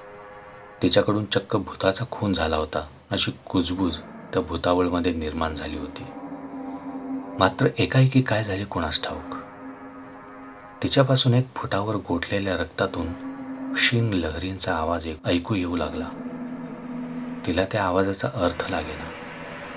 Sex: male